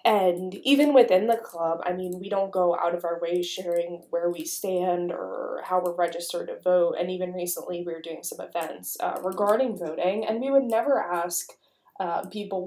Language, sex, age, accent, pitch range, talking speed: English, female, 20-39, American, 175-220 Hz, 200 wpm